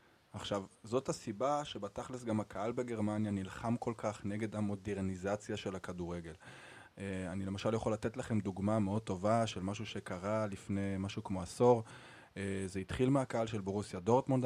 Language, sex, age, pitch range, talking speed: Hebrew, male, 20-39, 100-115 Hz, 155 wpm